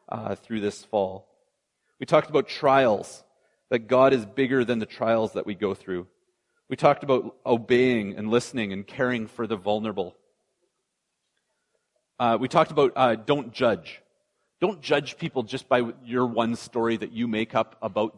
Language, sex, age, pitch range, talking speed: English, male, 40-59, 105-135 Hz, 165 wpm